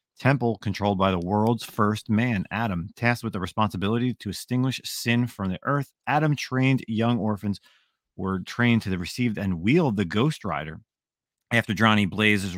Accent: American